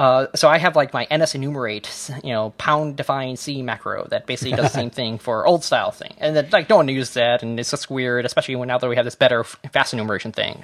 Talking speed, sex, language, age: 275 wpm, male, English, 20-39